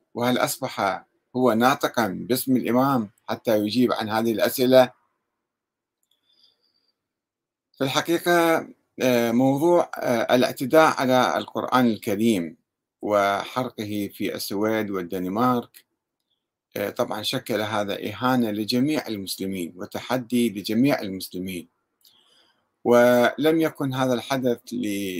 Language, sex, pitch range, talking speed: Arabic, male, 110-135 Hz, 85 wpm